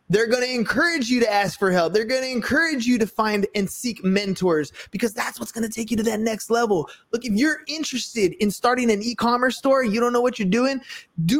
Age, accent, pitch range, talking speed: 20-39, American, 195-270 Hz, 225 wpm